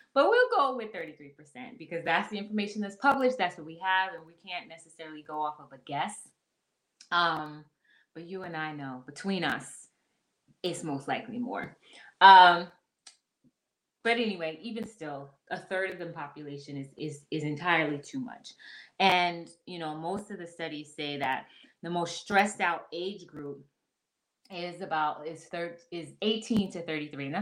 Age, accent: 20-39, American